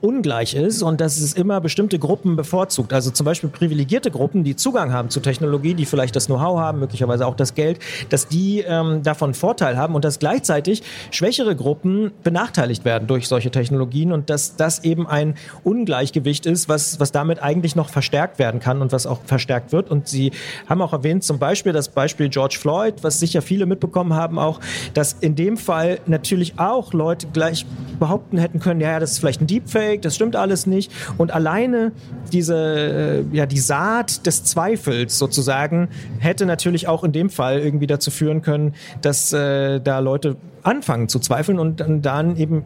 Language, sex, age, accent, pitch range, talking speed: German, male, 40-59, German, 145-185 Hz, 185 wpm